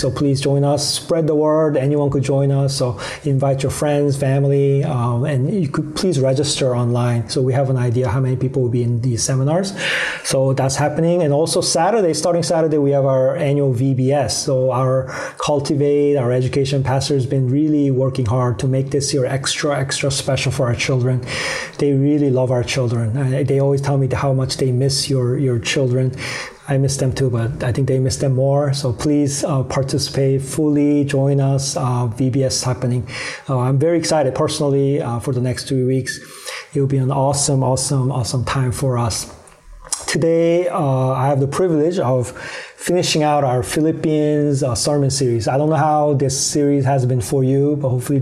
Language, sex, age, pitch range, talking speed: English, male, 30-49, 130-145 Hz, 190 wpm